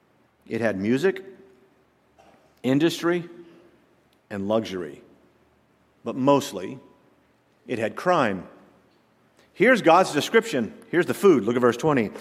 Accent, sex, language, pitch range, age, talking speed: American, male, English, 115-145 Hz, 50-69, 105 wpm